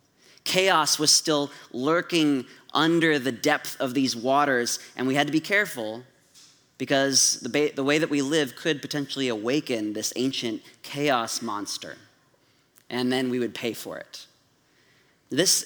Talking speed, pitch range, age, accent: 145 wpm, 125-155 Hz, 30-49, American